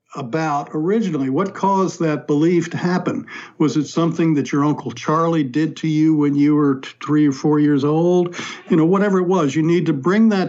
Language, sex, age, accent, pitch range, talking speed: English, male, 60-79, American, 140-170 Hz, 205 wpm